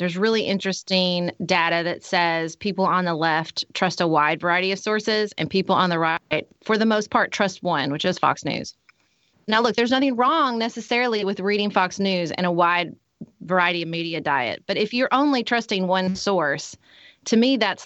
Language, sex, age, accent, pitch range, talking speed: English, female, 30-49, American, 180-230 Hz, 195 wpm